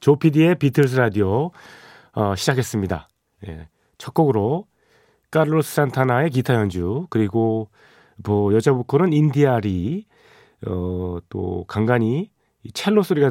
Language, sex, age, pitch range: Korean, male, 40-59, 100-140 Hz